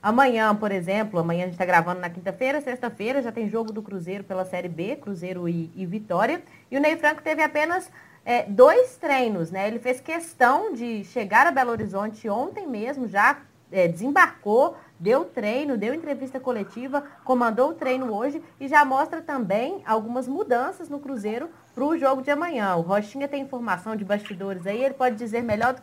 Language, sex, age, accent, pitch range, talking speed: Portuguese, female, 20-39, Brazilian, 200-275 Hz, 180 wpm